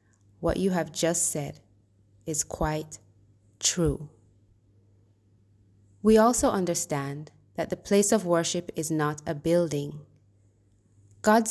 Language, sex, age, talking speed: English, female, 20-39, 110 wpm